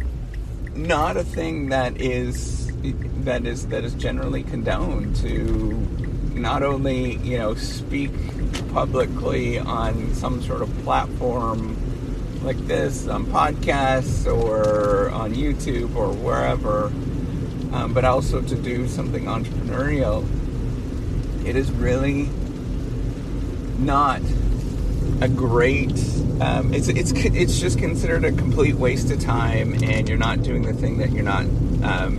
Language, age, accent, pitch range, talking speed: English, 30-49, American, 115-130 Hz, 125 wpm